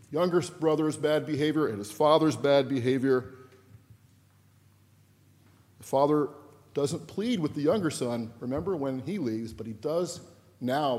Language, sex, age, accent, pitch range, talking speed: English, male, 50-69, American, 105-140 Hz, 135 wpm